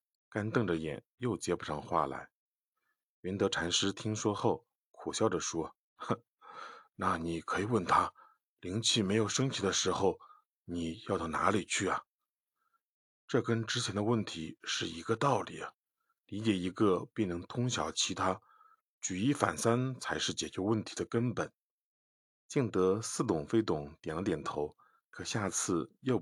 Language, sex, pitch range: Chinese, male, 85-125 Hz